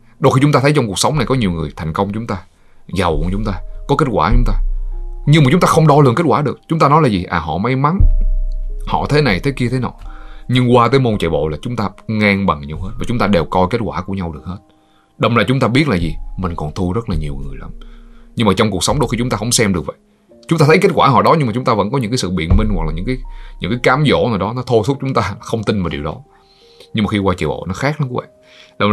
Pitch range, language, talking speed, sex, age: 85-120 Hz, Vietnamese, 315 wpm, male, 20-39